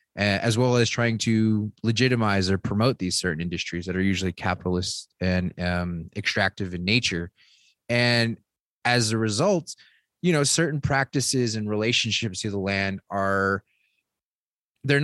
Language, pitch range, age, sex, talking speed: English, 95-115 Hz, 20-39, male, 140 wpm